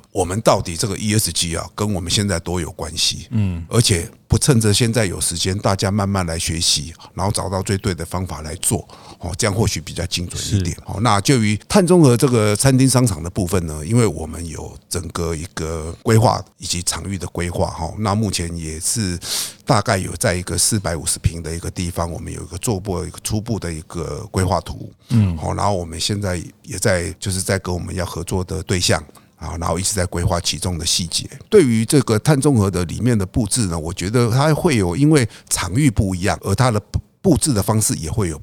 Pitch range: 90-115 Hz